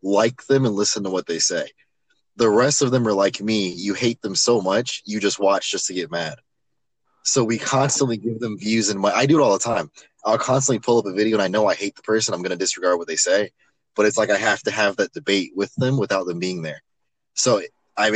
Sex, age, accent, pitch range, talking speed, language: male, 20-39, American, 100-120 Hz, 260 wpm, English